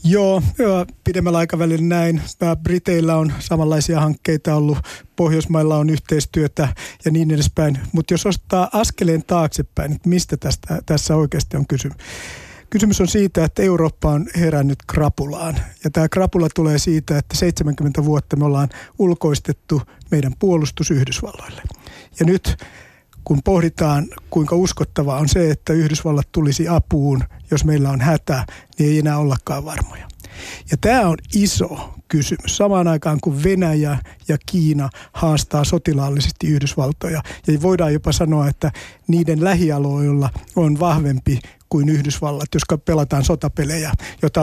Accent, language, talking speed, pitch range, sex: native, Finnish, 135 wpm, 145-170 Hz, male